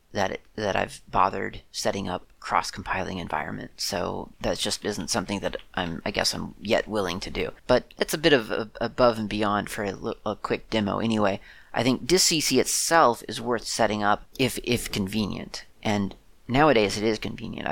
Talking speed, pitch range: 185 wpm, 110-130 Hz